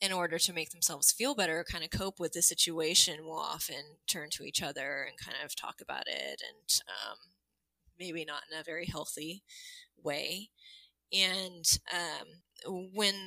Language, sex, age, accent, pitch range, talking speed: English, female, 20-39, American, 160-195 Hz, 165 wpm